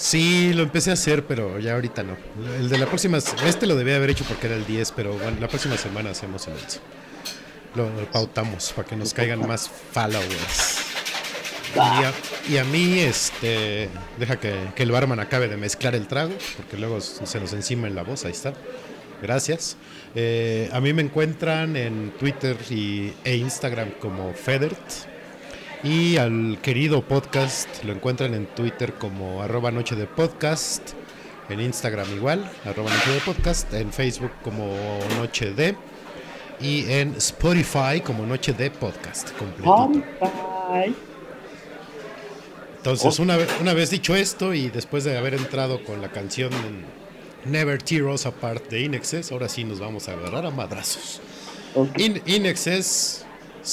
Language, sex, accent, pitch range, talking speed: Spanish, male, Mexican, 110-150 Hz, 155 wpm